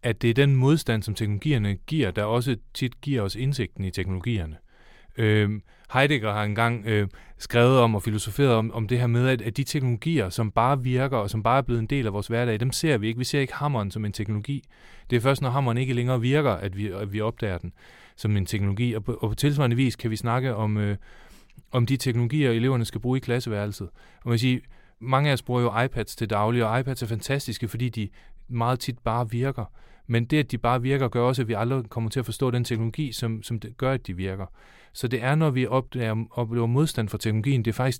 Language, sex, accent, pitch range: Danish, male, native, 110-130 Hz